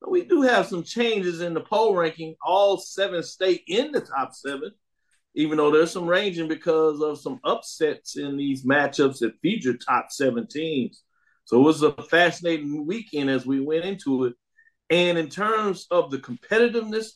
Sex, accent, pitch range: male, American, 130-175 Hz